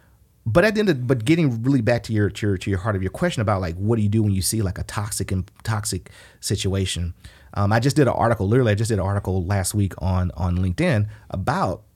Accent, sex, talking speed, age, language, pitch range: American, male, 260 wpm, 30-49, English, 95-125 Hz